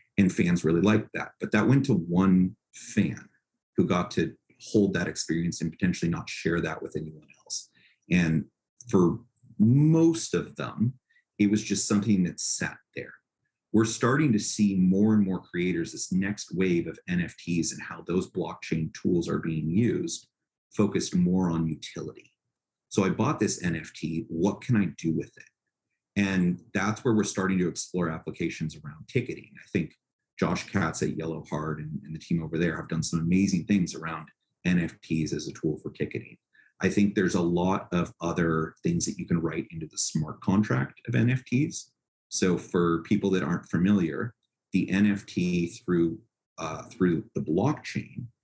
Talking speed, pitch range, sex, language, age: 170 wpm, 80-105 Hz, male, English, 30-49